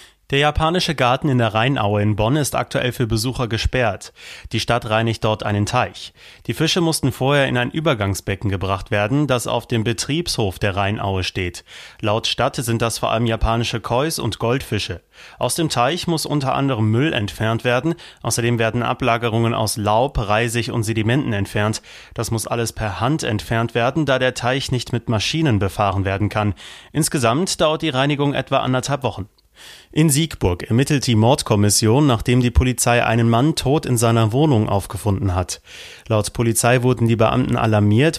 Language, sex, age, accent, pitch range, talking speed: German, male, 30-49, German, 110-130 Hz, 170 wpm